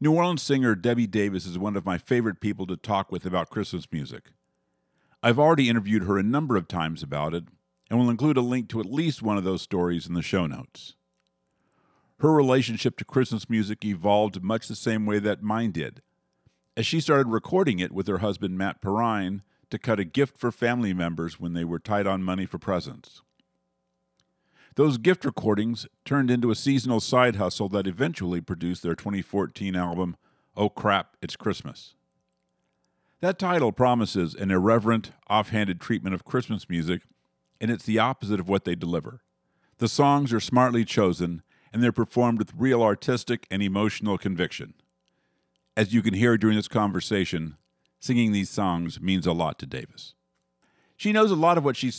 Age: 50-69